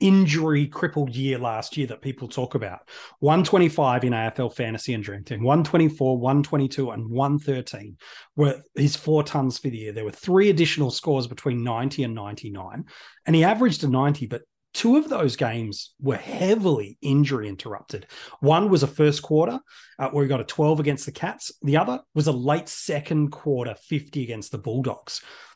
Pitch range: 125-165 Hz